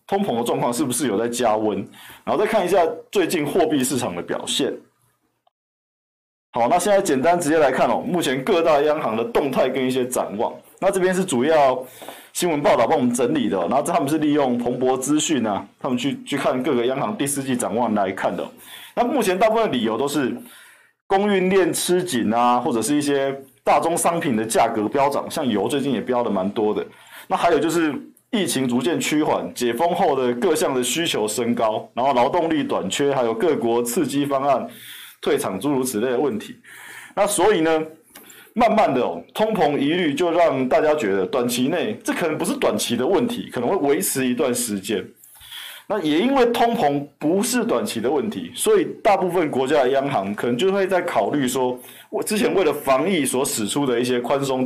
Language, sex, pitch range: Chinese, male, 125-195 Hz